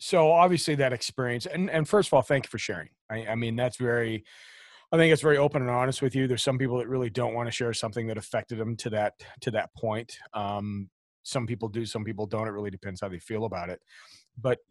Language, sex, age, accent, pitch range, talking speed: English, male, 40-59, American, 110-130 Hz, 250 wpm